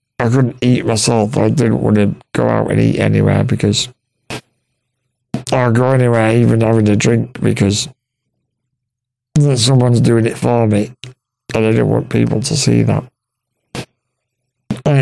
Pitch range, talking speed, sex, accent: 115-130 Hz, 145 wpm, male, British